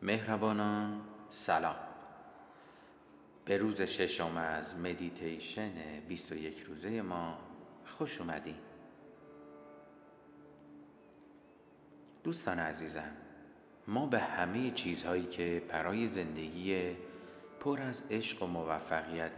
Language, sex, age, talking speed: Persian, male, 40-59, 80 wpm